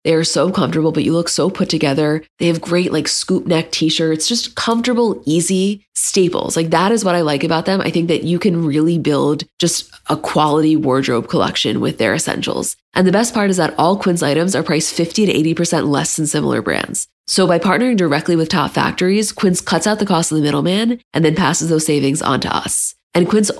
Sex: female